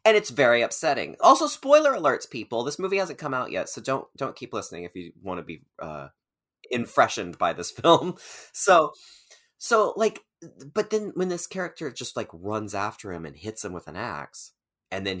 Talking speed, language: 195 wpm, English